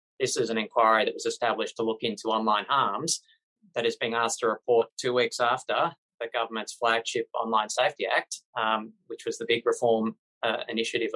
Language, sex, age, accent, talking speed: English, male, 20-39, Australian, 190 wpm